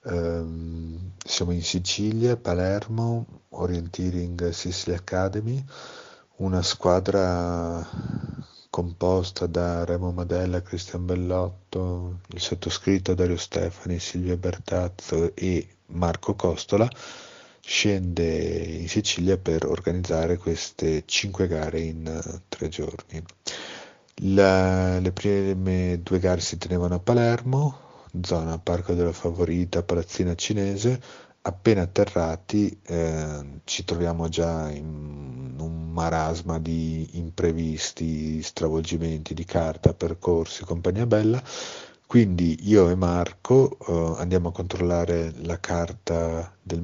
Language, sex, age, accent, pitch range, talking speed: Italian, male, 50-69, native, 80-95 Hz, 100 wpm